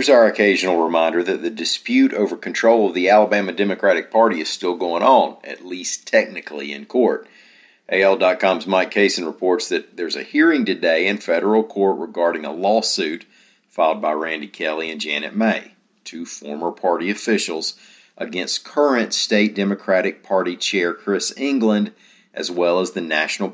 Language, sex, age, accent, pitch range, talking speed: English, male, 50-69, American, 85-110 Hz, 160 wpm